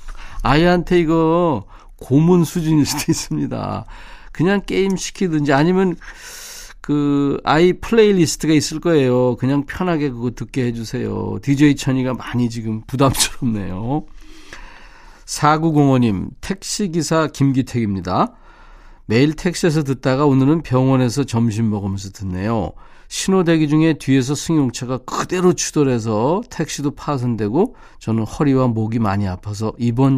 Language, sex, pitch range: Korean, male, 105-155 Hz